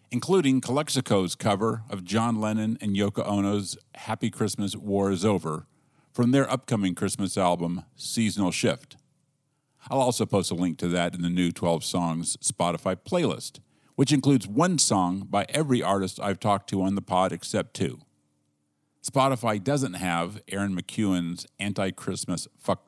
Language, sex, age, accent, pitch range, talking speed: English, male, 50-69, American, 95-130 Hz, 150 wpm